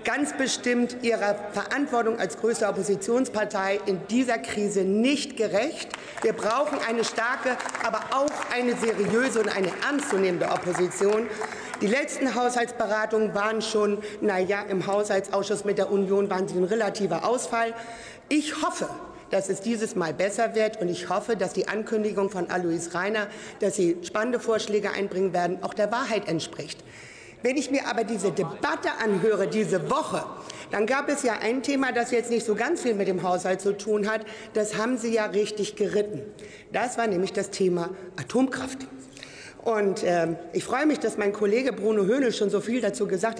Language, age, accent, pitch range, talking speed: German, 50-69, German, 195-235 Hz, 170 wpm